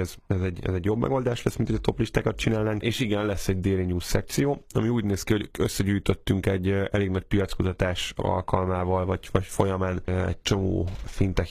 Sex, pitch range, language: male, 90-105 Hz, Hungarian